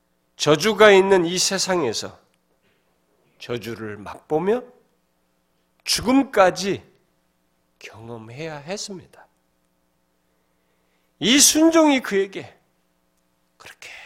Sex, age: male, 40-59